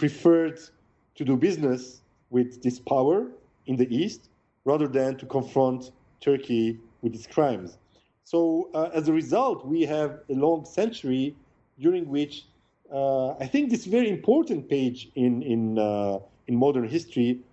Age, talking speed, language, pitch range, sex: 40-59, 145 wpm, English, 130-195 Hz, male